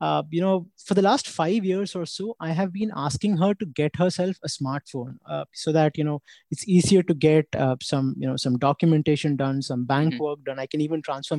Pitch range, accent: 155-190 Hz, Indian